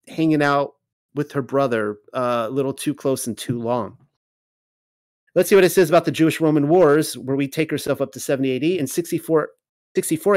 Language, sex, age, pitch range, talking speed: English, male, 30-49, 135-165 Hz, 195 wpm